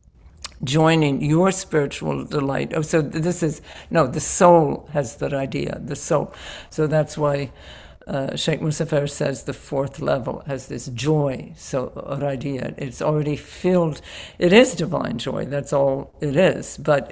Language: English